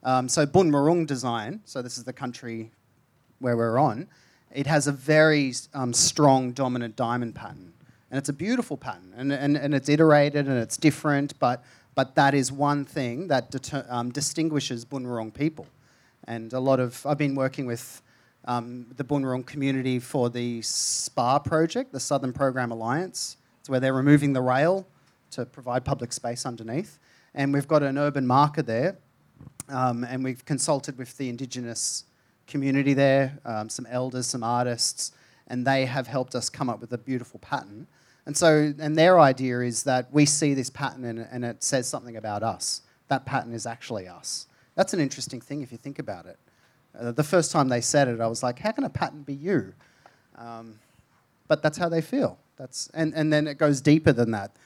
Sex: male